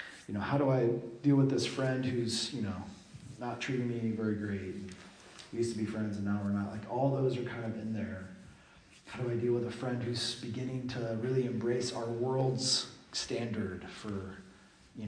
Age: 30-49